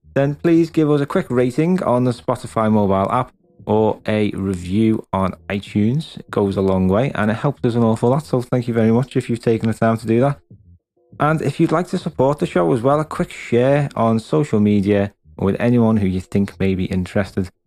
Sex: male